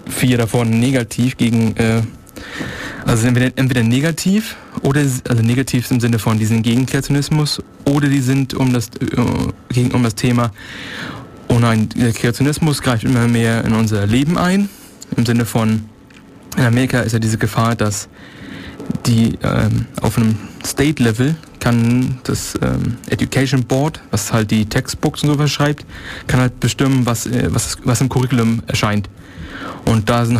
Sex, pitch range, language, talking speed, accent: male, 115-130 Hz, German, 150 wpm, German